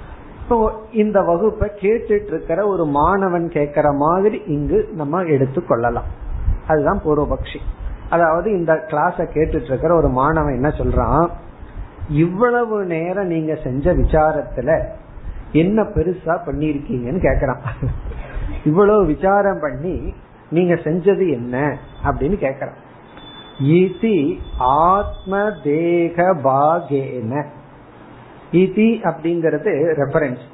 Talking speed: 75 wpm